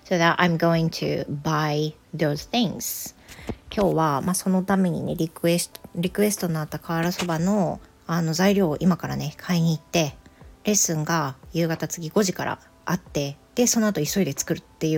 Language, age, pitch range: Japanese, 40-59, 155-190 Hz